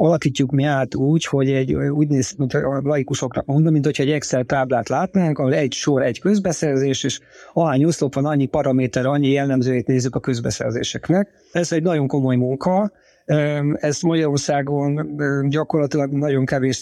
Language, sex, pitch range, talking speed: Hungarian, male, 140-165 Hz, 155 wpm